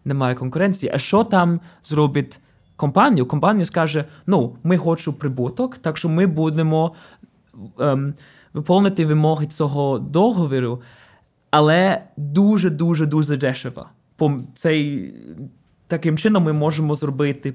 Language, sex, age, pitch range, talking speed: Ukrainian, male, 20-39, 145-175 Hz, 110 wpm